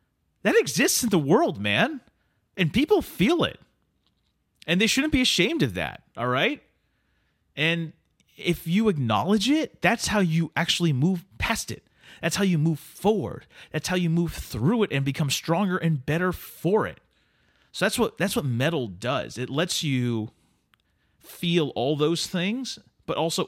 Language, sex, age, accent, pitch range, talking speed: English, male, 30-49, American, 125-170 Hz, 165 wpm